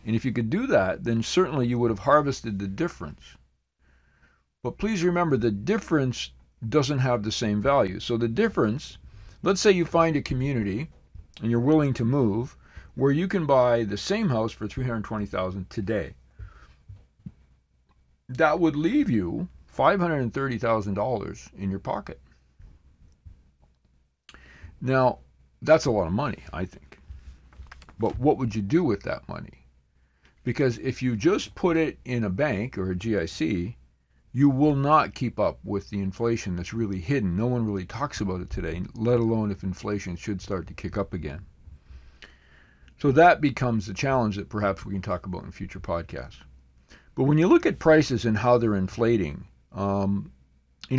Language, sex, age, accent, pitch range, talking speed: English, male, 50-69, American, 85-125 Hz, 160 wpm